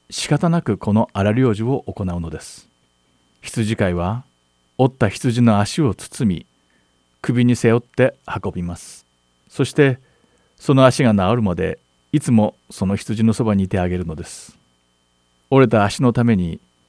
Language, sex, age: Japanese, male, 40-59